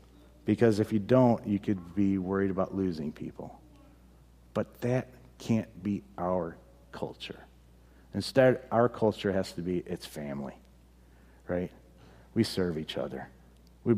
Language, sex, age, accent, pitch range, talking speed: English, male, 50-69, American, 95-150 Hz, 135 wpm